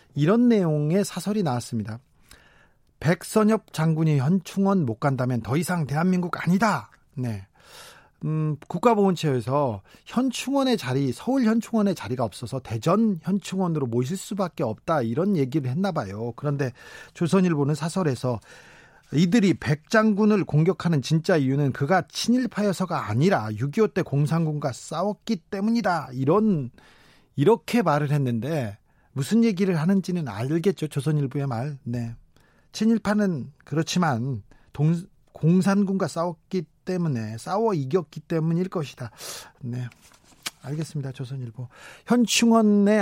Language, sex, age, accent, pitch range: Korean, male, 40-59, native, 135-190 Hz